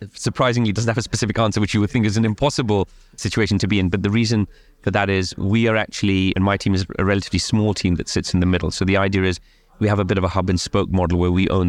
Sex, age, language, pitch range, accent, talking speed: male, 30-49, English, 90-105 Hz, British, 285 wpm